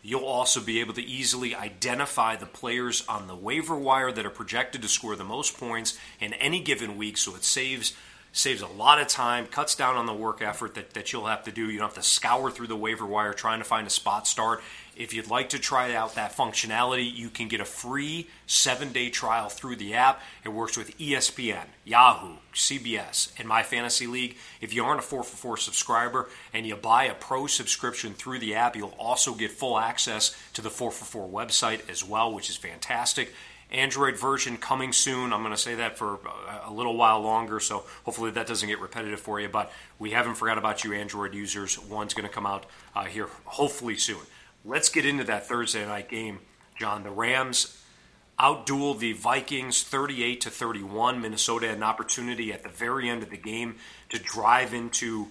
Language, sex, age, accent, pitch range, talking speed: English, male, 30-49, American, 110-125 Hz, 205 wpm